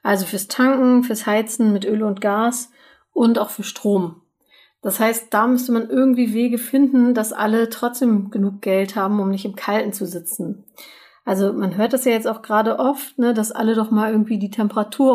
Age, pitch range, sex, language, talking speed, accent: 30-49, 205-245 Hz, female, German, 195 wpm, German